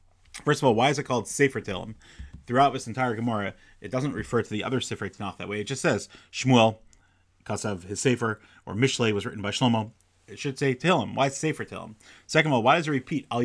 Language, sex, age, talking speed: English, male, 30-49, 235 wpm